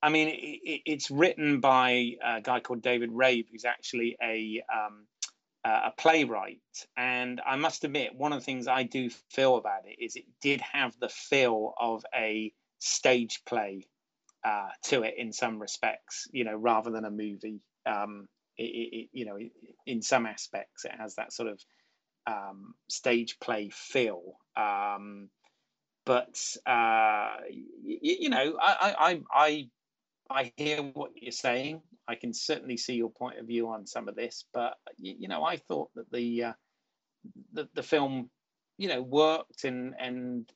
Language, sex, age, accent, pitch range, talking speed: English, male, 30-49, British, 115-140 Hz, 160 wpm